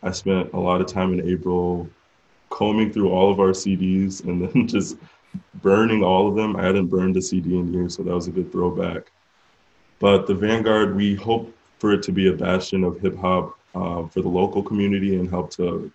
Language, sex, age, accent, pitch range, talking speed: English, male, 20-39, American, 90-95 Hz, 205 wpm